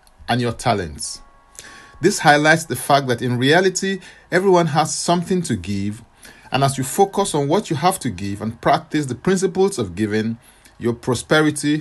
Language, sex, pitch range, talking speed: English, male, 110-165 Hz, 170 wpm